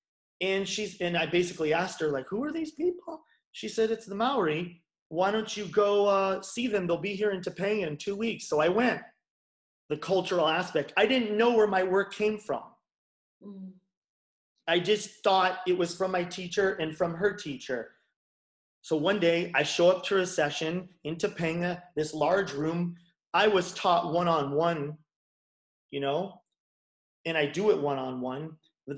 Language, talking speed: English, 175 wpm